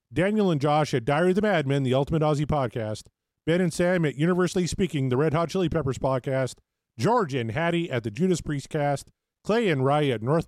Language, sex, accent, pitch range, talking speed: English, male, American, 130-165 Hz, 210 wpm